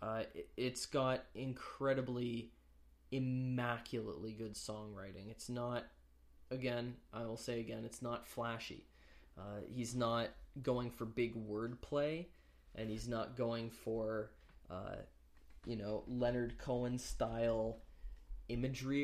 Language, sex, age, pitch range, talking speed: English, male, 20-39, 110-130 Hz, 115 wpm